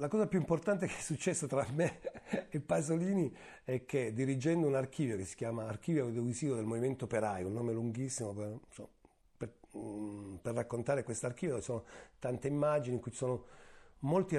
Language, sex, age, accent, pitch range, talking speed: Italian, male, 40-59, native, 115-155 Hz, 175 wpm